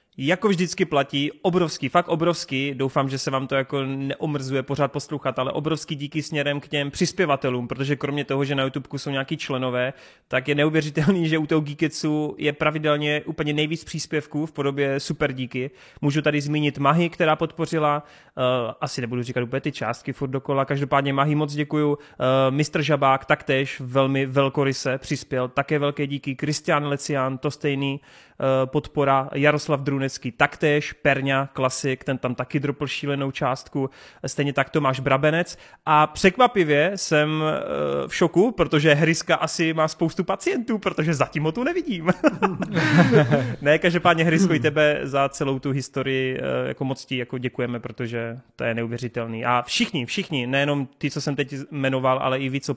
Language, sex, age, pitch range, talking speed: Czech, male, 20-39, 135-155 Hz, 165 wpm